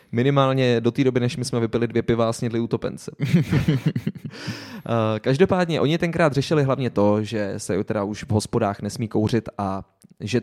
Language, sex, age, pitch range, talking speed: Czech, male, 20-39, 115-145 Hz, 155 wpm